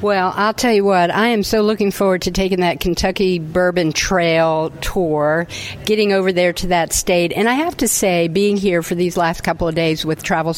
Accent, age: American, 50-69